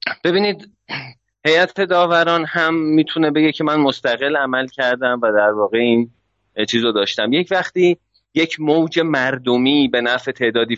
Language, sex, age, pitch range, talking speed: Persian, male, 30-49, 115-155 Hz, 140 wpm